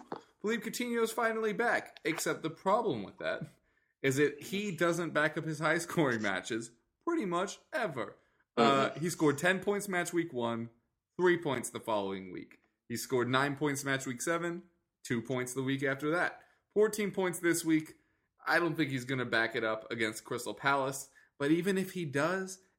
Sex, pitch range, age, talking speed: male, 115-180 Hz, 20-39, 180 wpm